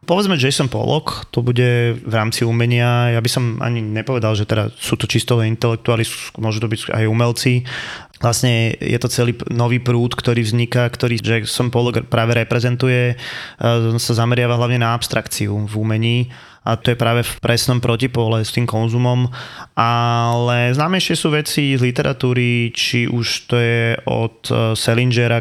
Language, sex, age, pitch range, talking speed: Slovak, male, 20-39, 110-125 Hz, 160 wpm